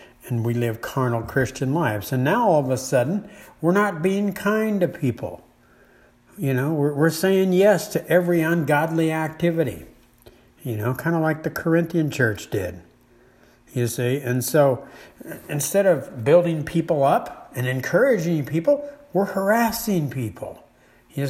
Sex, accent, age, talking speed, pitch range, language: male, American, 60-79, 150 wpm, 125-175 Hz, English